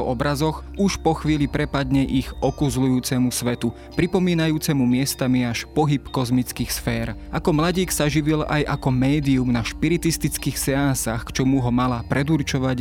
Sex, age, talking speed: male, 20-39, 130 wpm